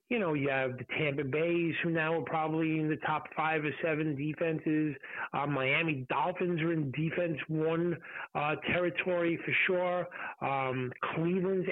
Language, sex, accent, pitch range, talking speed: English, male, American, 155-185 Hz, 160 wpm